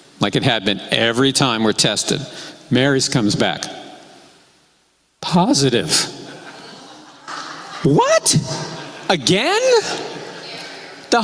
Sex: male